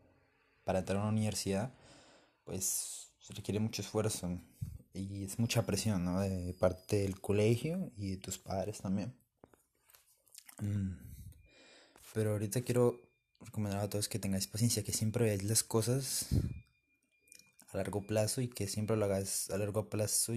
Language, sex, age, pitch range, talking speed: Spanish, male, 20-39, 95-110 Hz, 145 wpm